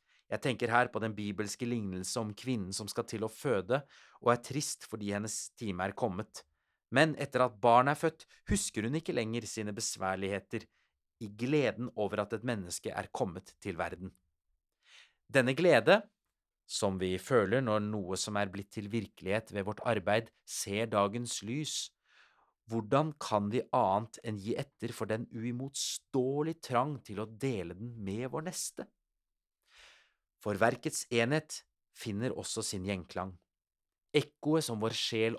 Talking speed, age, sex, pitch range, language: 155 wpm, 30-49, male, 100-125 Hz, English